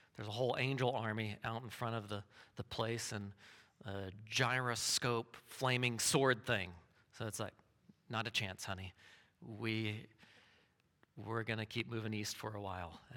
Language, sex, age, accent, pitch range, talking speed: English, male, 40-59, American, 110-135 Hz, 160 wpm